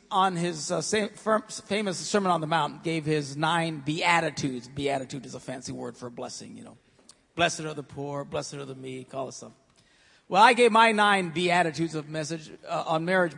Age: 40-59